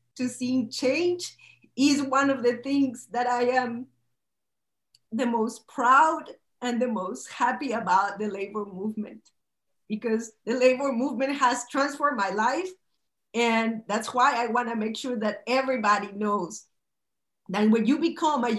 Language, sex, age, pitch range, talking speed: English, female, 40-59, 210-255 Hz, 145 wpm